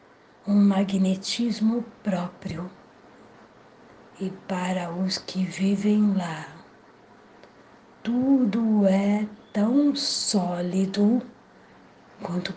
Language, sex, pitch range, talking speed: Portuguese, female, 185-240 Hz, 65 wpm